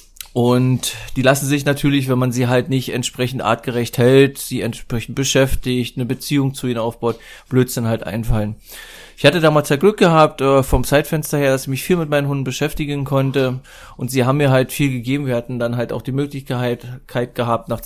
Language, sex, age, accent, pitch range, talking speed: German, male, 20-39, German, 120-140 Hz, 195 wpm